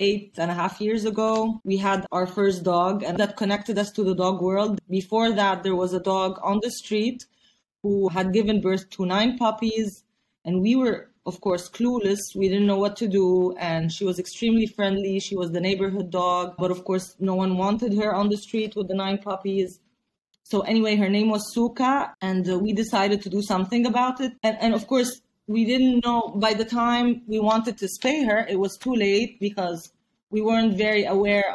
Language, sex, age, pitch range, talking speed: English, female, 20-39, 190-225 Hz, 205 wpm